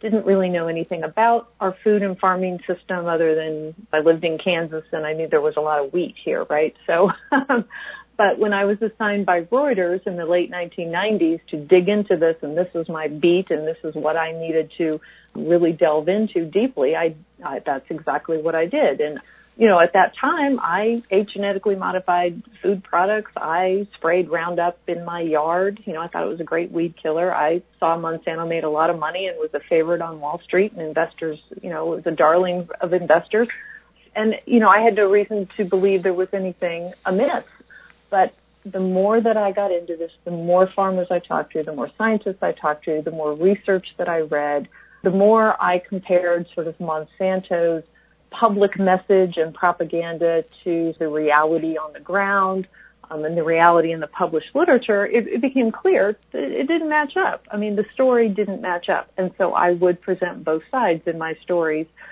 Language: English